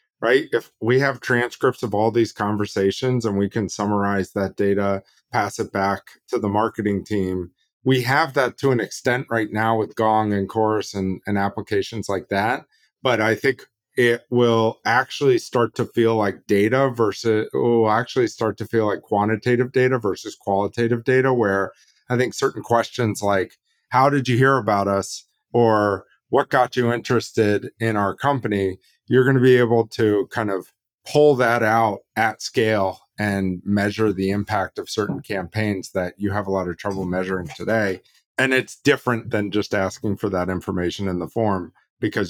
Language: English